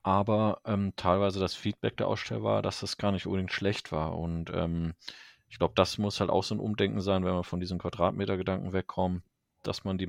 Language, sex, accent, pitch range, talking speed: German, male, German, 85-100 Hz, 215 wpm